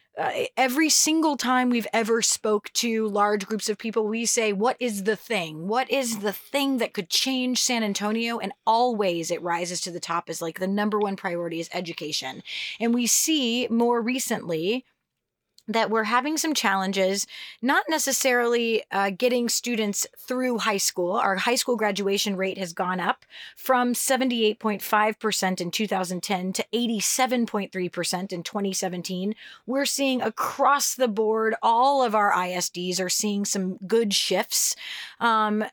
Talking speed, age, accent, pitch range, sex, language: 155 wpm, 30-49, American, 190-255 Hz, female, English